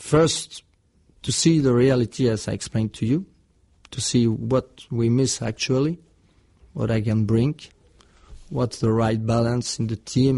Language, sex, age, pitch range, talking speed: English, male, 40-59, 90-135 Hz, 155 wpm